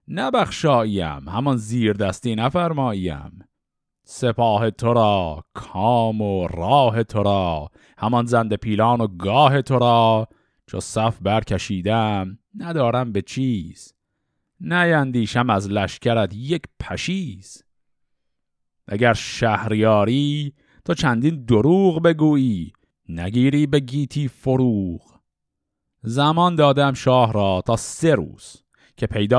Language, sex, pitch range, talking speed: Persian, male, 105-145 Hz, 100 wpm